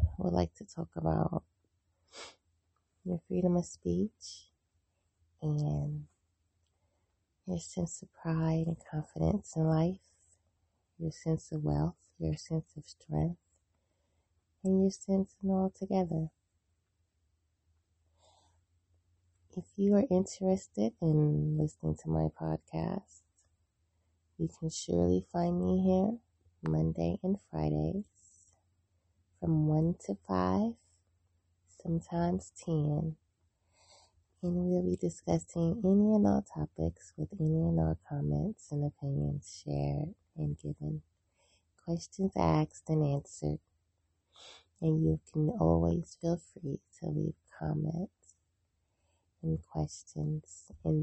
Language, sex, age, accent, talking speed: English, female, 20-39, American, 105 wpm